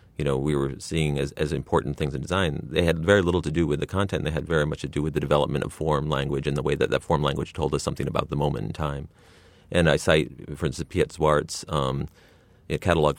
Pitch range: 75-90 Hz